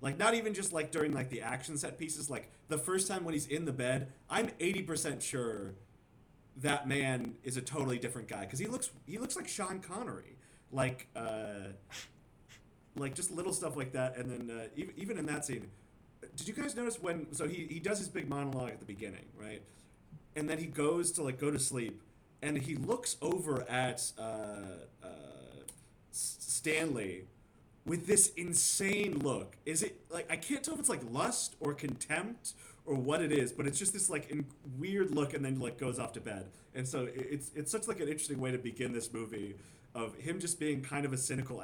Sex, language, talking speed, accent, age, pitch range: male, English, 205 wpm, American, 30-49, 115-155 Hz